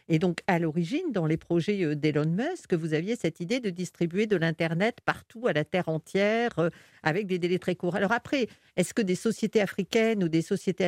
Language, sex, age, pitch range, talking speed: French, female, 50-69, 170-220 Hz, 210 wpm